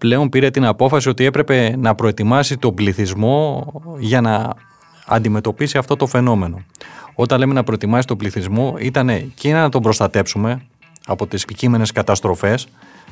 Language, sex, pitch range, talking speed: Greek, male, 105-150 Hz, 140 wpm